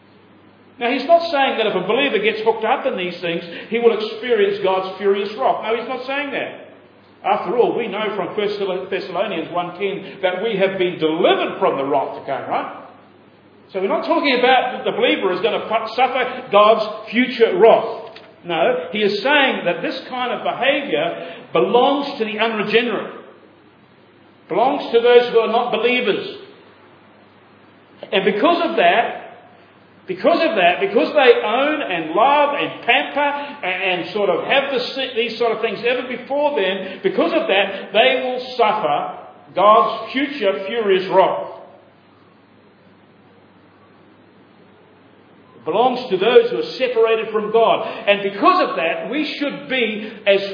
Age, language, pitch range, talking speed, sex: 50-69, English, 195-275 Hz, 155 wpm, male